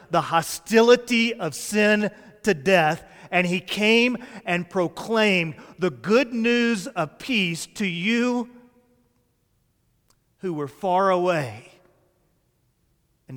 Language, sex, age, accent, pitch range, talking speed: English, male, 40-59, American, 145-200 Hz, 105 wpm